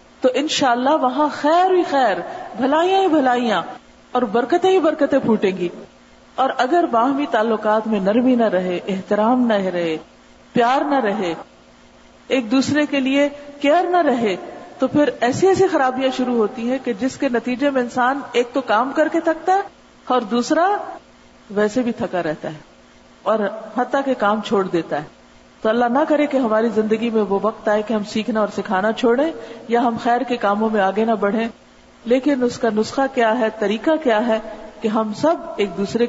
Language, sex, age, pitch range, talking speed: Urdu, female, 40-59, 200-270 Hz, 185 wpm